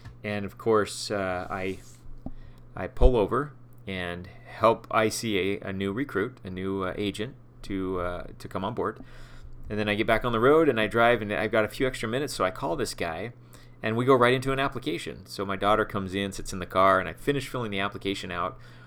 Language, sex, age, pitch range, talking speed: English, male, 30-49, 100-125 Hz, 225 wpm